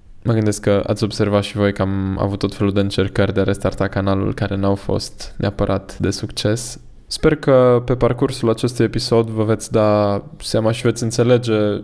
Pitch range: 100-120 Hz